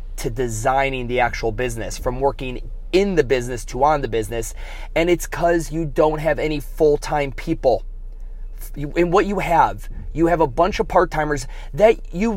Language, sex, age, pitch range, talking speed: English, male, 20-39, 130-165 Hz, 170 wpm